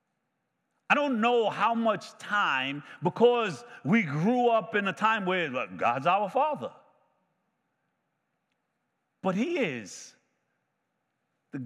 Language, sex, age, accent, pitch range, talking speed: English, male, 50-69, American, 170-240 Hz, 110 wpm